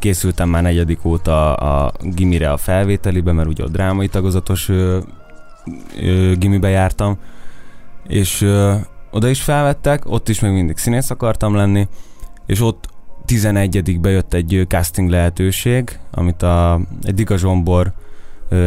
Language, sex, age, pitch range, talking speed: Hungarian, male, 20-39, 90-100 Hz, 130 wpm